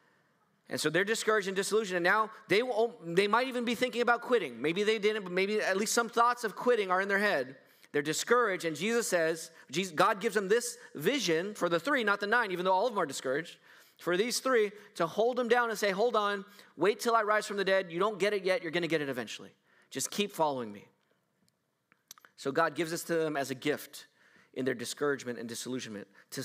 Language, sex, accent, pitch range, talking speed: English, male, American, 145-210 Hz, 235 wpm